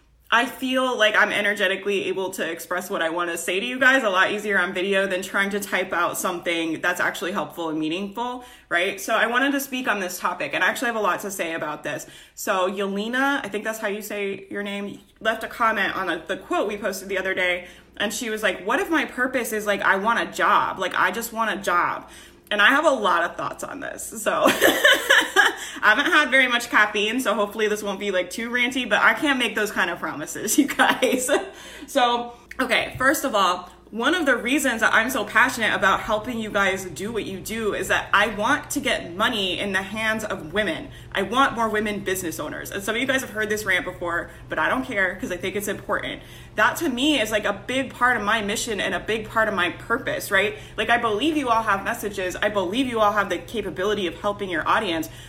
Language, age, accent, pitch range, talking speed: English, 20-39, American, 190-245 Hz, 240 wpm